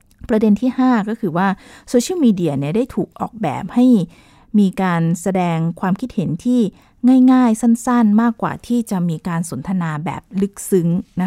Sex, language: female, Thai